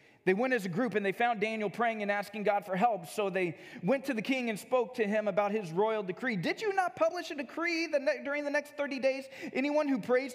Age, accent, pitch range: 30-49, American, 160-235 Hz